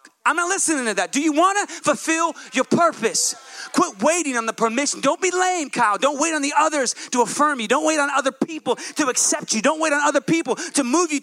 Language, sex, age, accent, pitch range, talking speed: English, male, 30-49, American, 280-335 Hz, 240 wpm